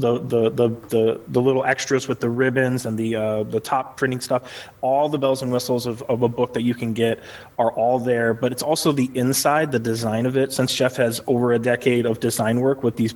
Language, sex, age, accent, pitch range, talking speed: English, male, 20-39, American, 115-130 Hz, 235 wpm